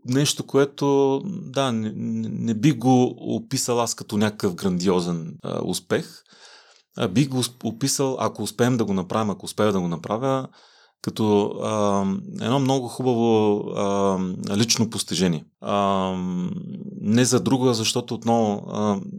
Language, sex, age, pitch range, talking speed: Bulgarian, male, 30-49, 105-125 Hz, 140 wpm